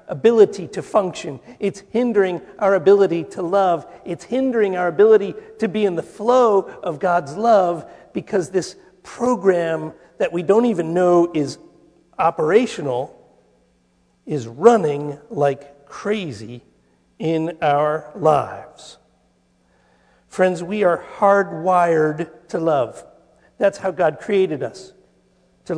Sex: male